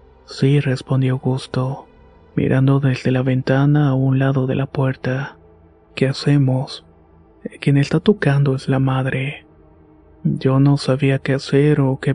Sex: male